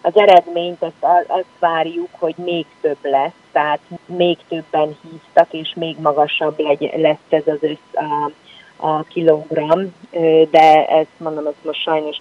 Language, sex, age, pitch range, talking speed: Hungarian, female, 30-49, 150-180 Hz, 145 wpm